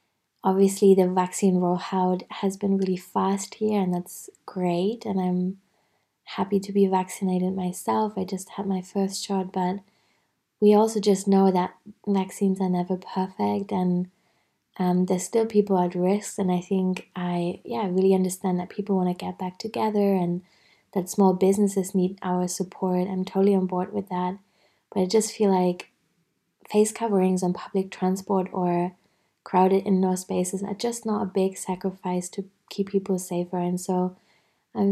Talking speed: 165 wpm